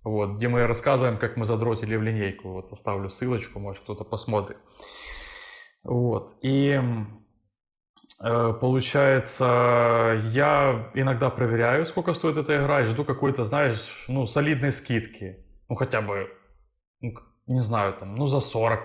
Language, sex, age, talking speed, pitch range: Ukrainian, male, 20-39, 135 wpm, 110-135 Hz